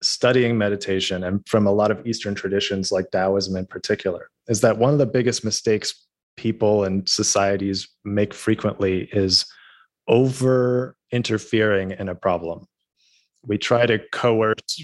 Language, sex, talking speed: English, male, 140 wpm